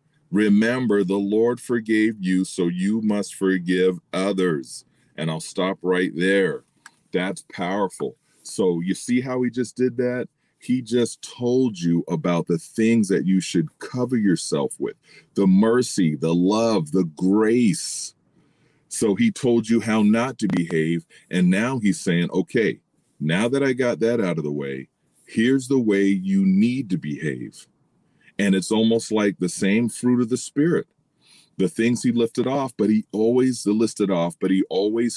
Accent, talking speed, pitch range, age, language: American, 165 wpm, 95-120 Hz, 40-59, English